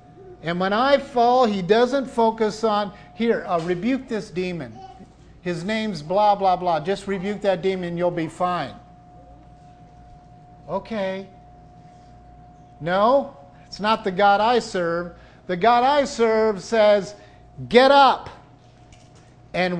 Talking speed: 120 wpm